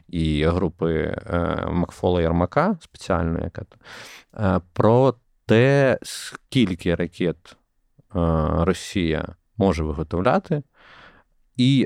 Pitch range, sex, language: 85-110 Hz, male, Ukrainian